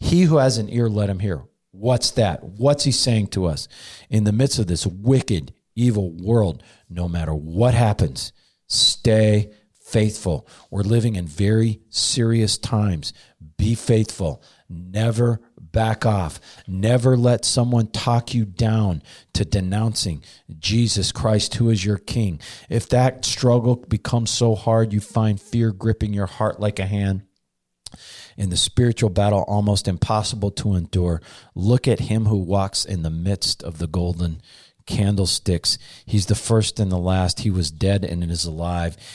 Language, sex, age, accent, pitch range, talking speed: English, male, 40-59, American, 95-115 Hz, 155 wpm